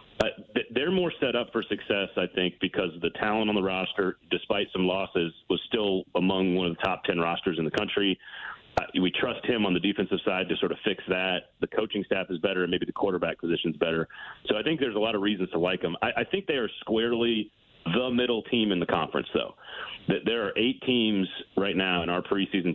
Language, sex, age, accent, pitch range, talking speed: English, male, 40-59, American, 85-105 Hz, 235 wpm